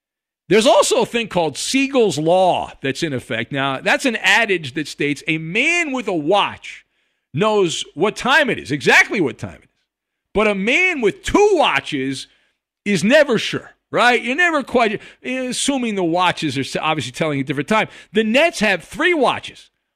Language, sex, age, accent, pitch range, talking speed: English, male, 50-69, American, 185-260 Hz, 175 wpm